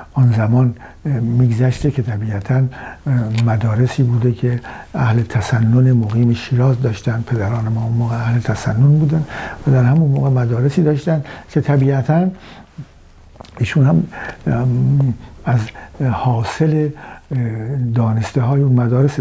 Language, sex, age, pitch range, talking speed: Persian, male, 60-79, 115-135 Hz, 110 wpm